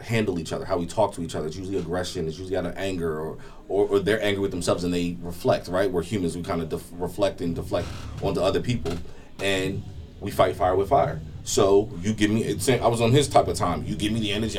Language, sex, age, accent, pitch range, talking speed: English, male, 30-49, American, 100-125 Hz, 250 wpm